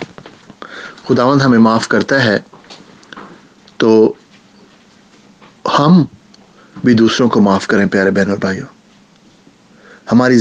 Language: English